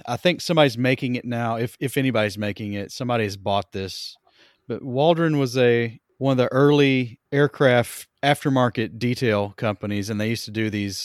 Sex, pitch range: male, 100-125 Hz